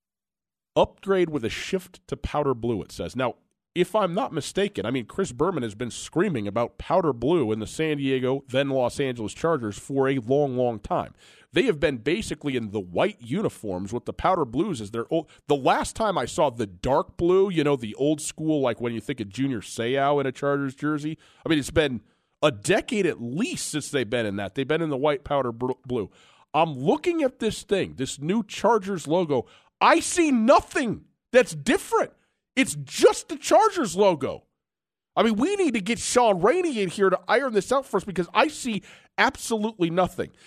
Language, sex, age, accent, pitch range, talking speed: English, male, 40-59, American, 130-195 Hz, 200 wpm